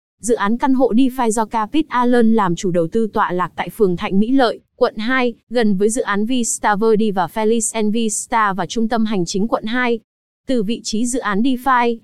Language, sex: Vietnamese, female